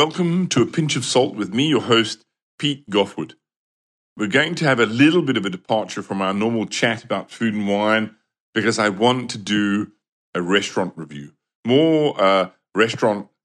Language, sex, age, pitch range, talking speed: English, male, 40-59, 105-130 Hz, 185 wpm